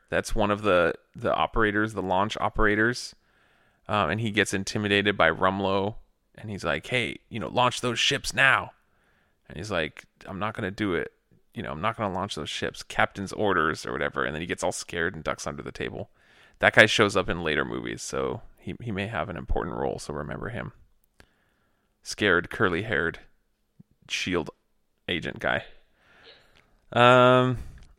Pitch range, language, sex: 90-125 Hz, English, male